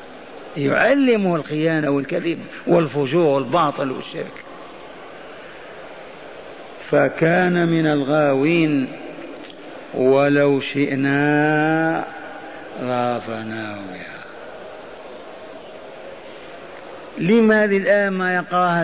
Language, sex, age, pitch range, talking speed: Arabic, male, 50-69, 160-215 Hz, 55 wpm